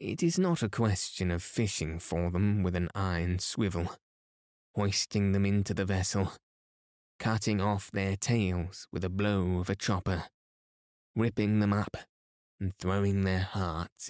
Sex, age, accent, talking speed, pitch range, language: male, 20-39, British, 150 wpm, 85-105 Hz, English